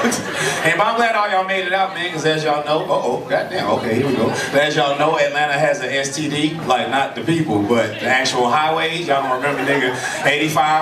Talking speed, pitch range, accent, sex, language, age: 220 wpm, 135-180 Hz, American, male, English, 30-49